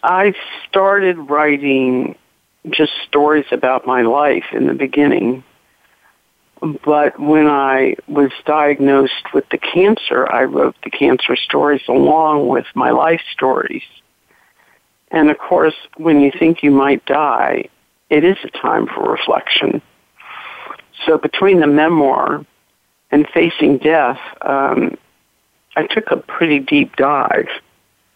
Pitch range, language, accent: 135-175 Hz, English, American